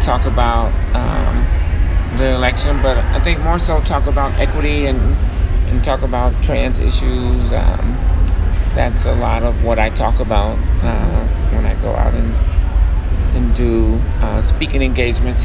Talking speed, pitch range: 150 wpm, 80-90 Hz